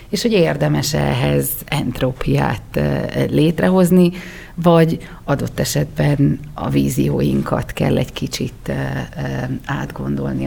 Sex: female